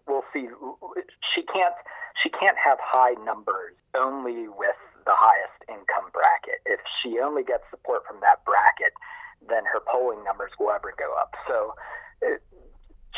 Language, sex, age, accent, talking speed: English, male, 40-59, American, 150 wpm